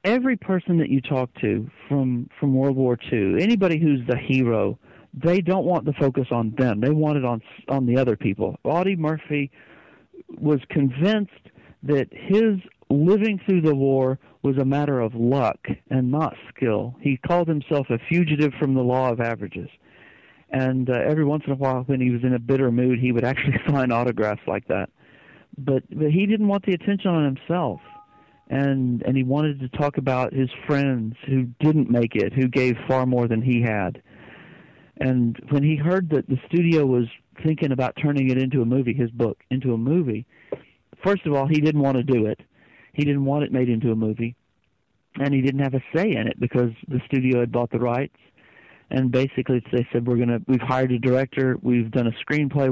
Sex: male